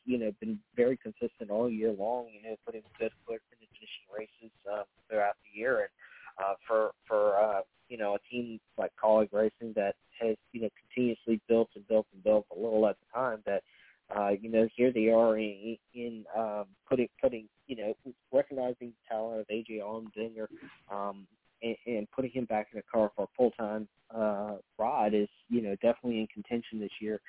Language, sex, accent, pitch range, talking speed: English, male, American, 110-125 Hz, 200 wpm